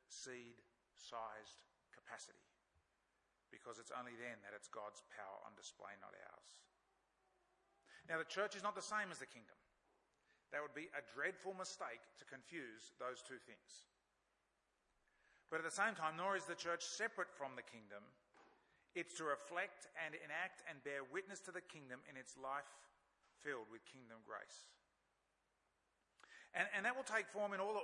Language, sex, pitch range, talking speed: English, male, 125-185 Hz, 160 wpm